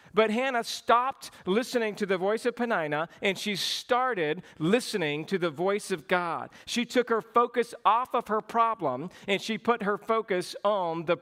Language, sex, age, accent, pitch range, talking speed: English, male, 50-69, American, 175-215 Hz, 175 wpm